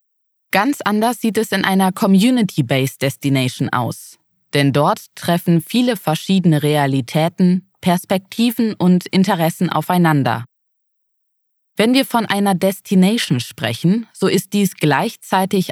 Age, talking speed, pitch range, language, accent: 20-39, 105 wpm, 155-195 Hz, German, German